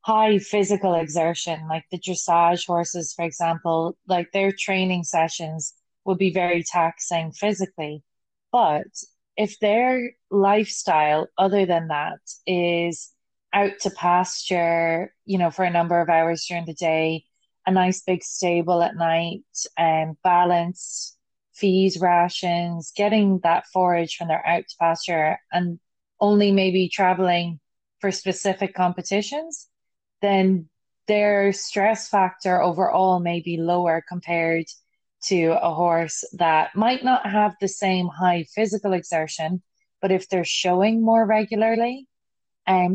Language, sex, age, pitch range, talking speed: English, female, 20-39, 165-195 Hz, 130 wpm